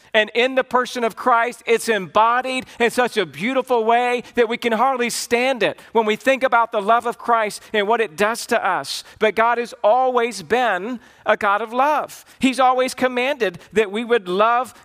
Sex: male